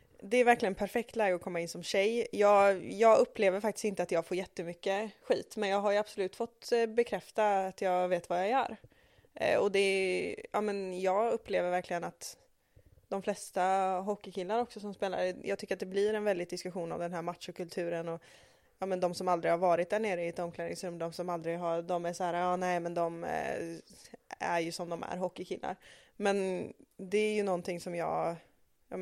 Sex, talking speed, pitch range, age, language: female, 205 wpm, 175-200 Hz, 20-39, Swedish